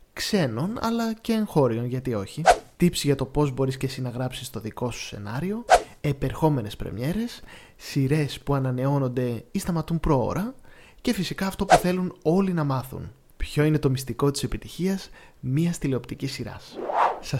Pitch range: 120-160 Hz